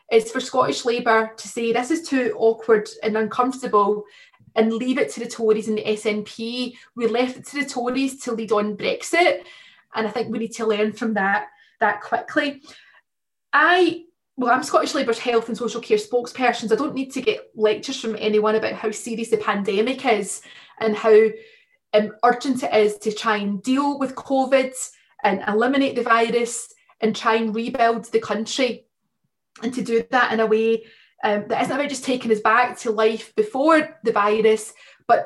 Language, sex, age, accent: English, female, 20-39, British